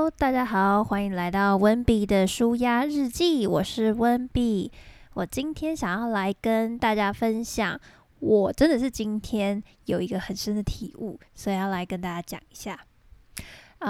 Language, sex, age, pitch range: Chinese, female, 20-39, 195-230 Hz